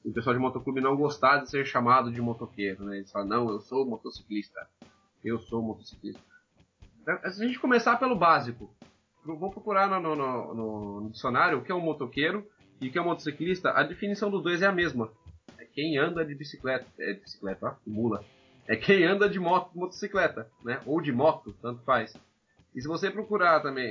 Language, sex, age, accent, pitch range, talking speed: Portuguese, male, 20-39, Brazilian, 120-180 Hz, 200 wpm